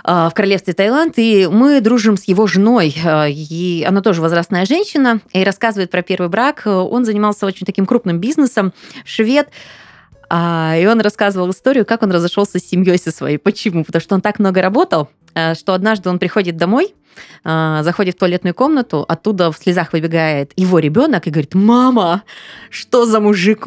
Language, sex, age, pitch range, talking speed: Russian, female, 20-39, 170-230 Hz, 165 wpm